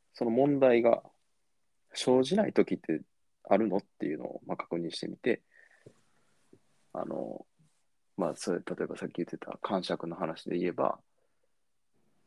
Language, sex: Japanese, male